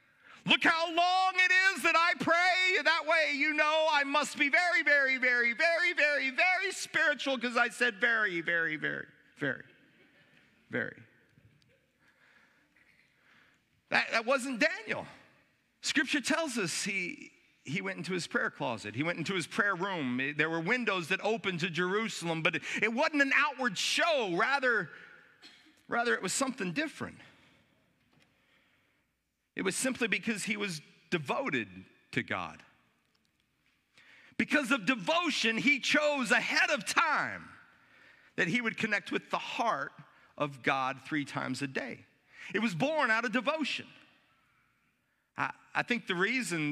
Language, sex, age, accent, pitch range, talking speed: English, male, 40-59, American, 180-290 Hz, 145 wpm